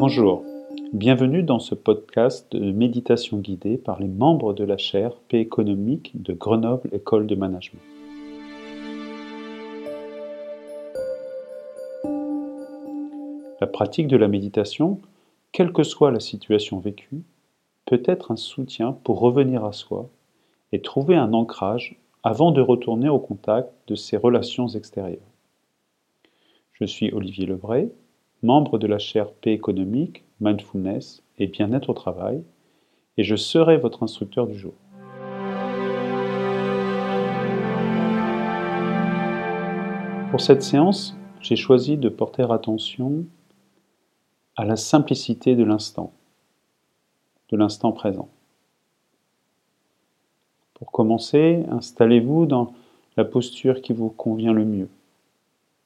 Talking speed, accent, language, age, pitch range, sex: 110 wpm, French, French, 40-59, 105-155 Hz, male